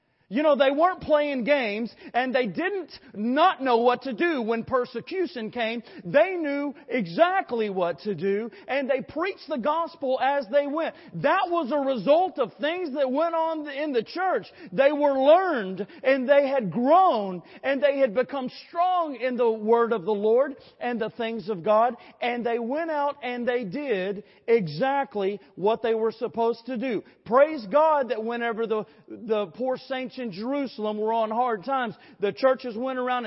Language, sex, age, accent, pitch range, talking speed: English, male, 40-59, American, 235-295 Hz, 175 wpm